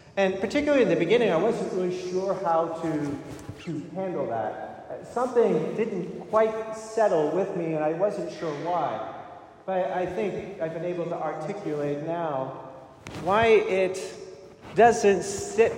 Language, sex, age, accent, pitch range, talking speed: English, male, 40-59, American, 160-220 Hz, 140 wpm